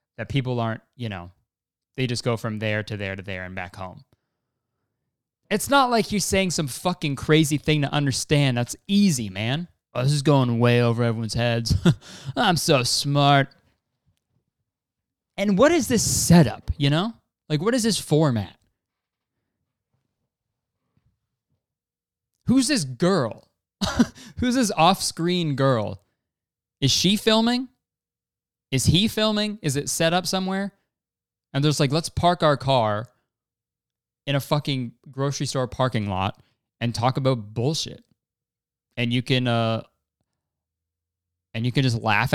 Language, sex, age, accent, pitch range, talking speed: English, male, 20-39, American, 115-155 Hz, 140 wpm